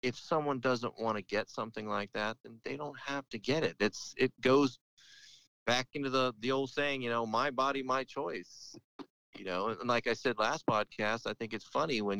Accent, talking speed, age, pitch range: American, 215 wpm, 30-49, 90-120 Hz